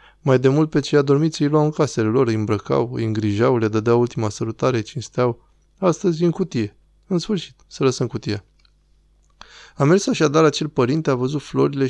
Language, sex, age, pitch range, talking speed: Romanian, male, 20-39, 115-170 Hz, 180 wpm